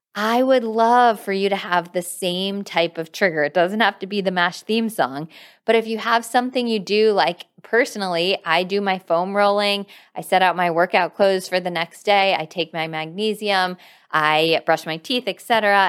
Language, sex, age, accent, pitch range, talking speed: English, female, 20-39, American, 155-210 Hz, 210 wpm